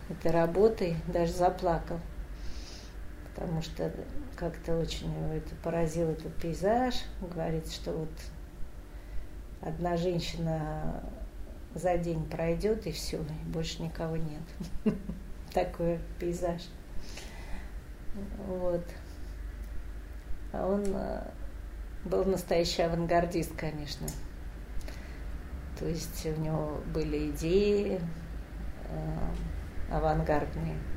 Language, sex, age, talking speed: Russian, female, 40-59, 80 wpm